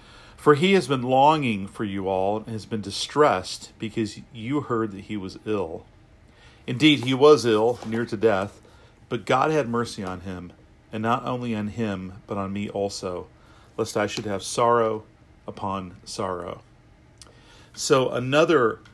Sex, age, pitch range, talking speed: male, 40-59, 105-120 Hz, 160 wpm